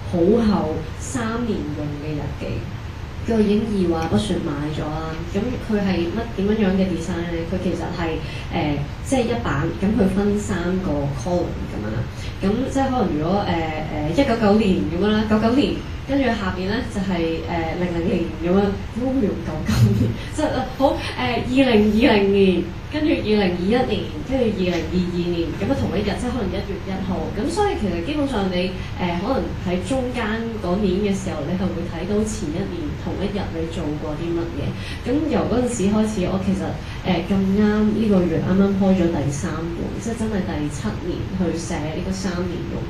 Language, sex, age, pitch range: Chinese, female, 20-39, 165-210 Hz